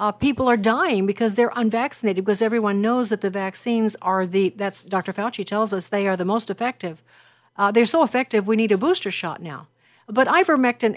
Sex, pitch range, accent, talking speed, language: female, 195-235 Hz, American, 200 wpm, English